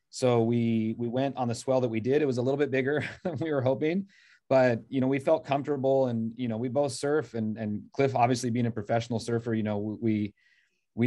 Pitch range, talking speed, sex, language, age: 105-130 Hz, 240 wpm, male, English, 30-49